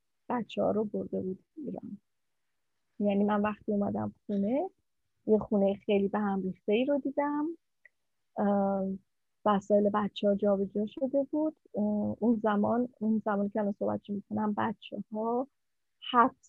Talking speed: 140 wpm